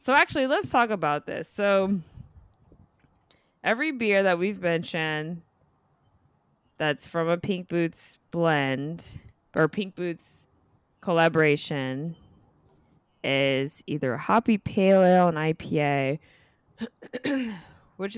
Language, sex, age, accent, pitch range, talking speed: English, female, 20-39, American, 150-195 Hz, 100 wpm